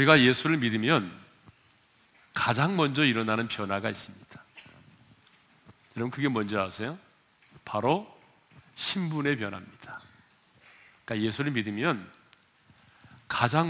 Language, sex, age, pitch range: Korean, male, 40-59, 110-155 Hz